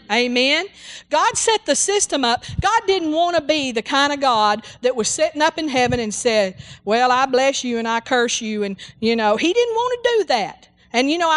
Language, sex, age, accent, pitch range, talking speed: English, female, 50-69, American, 245-335 Hz, 225 wpm